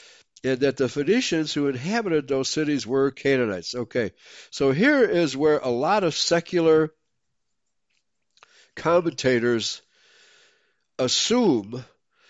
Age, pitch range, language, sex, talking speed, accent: 60-79, 115-155 Hz, English, male, 100 wpm, American